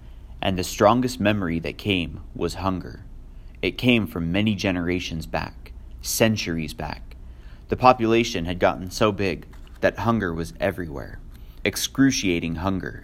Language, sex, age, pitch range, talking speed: English, male, 30-49, 70-105 Hz, 130 wpm